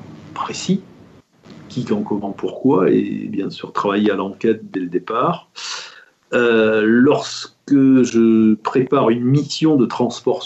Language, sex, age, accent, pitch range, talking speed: French, male, 50-69, French, 110-155 Hz, 125 wpm